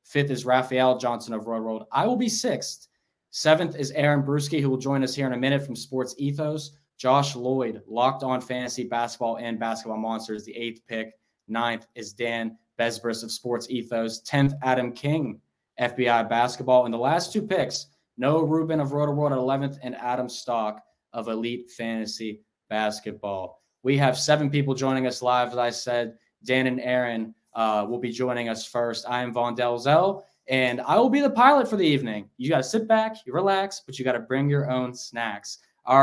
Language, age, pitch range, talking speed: English, 10-29, 115-135 Hz, 195 wpm